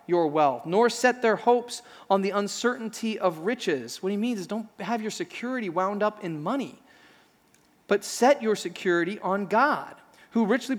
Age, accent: 30-49, American